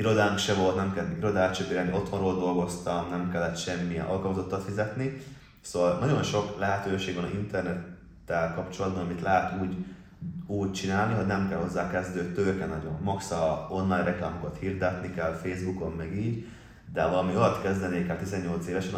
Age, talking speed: 20-39, 150 wpm